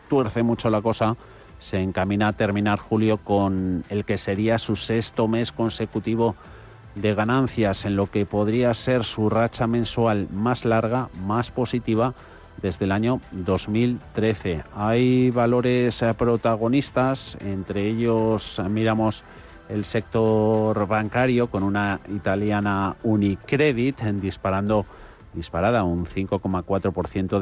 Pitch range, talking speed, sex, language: 95-115 Hz, 115 wpm, male, Spanish